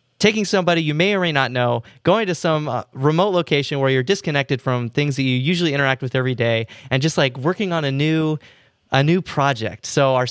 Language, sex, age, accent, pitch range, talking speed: English, male, 20-39, American, 125-155 Hz, 215 wpm